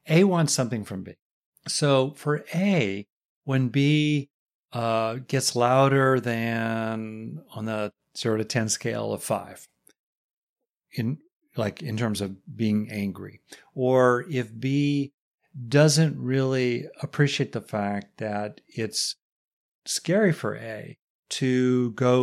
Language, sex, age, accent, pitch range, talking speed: English, male, 50-69, American, 110-150 Hz, 120 wpm